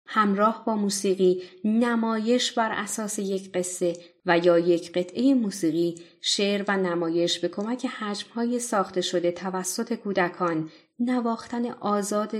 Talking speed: 120 wpm